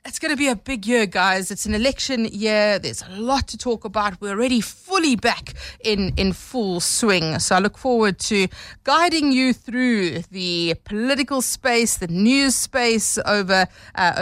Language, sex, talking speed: English, female, 175 wpm